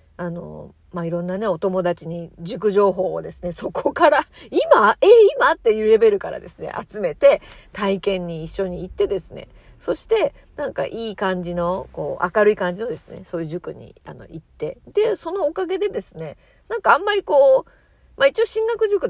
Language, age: Japanese, 40-59